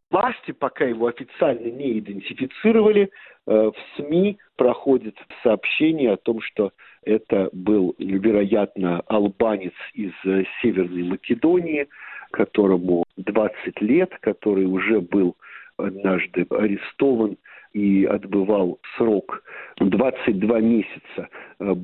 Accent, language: native, Russian